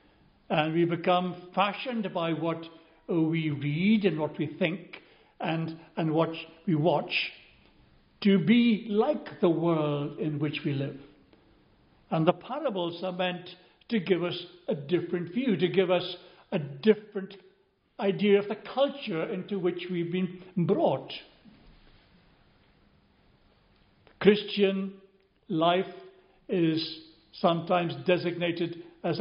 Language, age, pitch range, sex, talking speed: English, 60-79, 160-195 Hz, male, 115 wpm